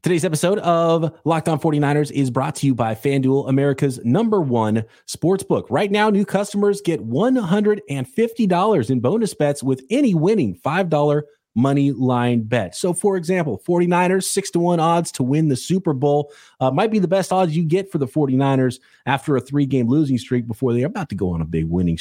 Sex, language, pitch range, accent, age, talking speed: male, English, 130-180 Hz, American, 30-49, 195 wpm